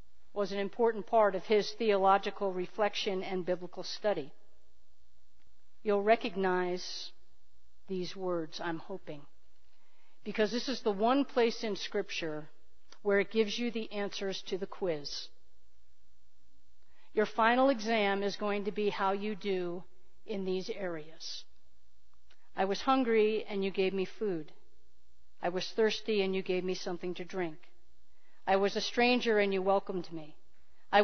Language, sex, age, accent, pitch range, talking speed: English, female, 50-69, American, 170-225 Hz, 145 wpm